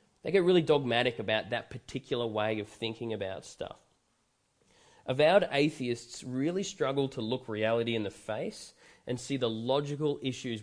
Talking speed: 150 wpm